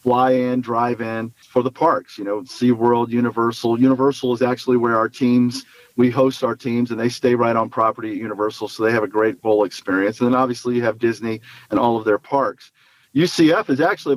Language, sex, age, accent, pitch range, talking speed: English, male, 40-59, American, 115-135 Hz, 215 wpm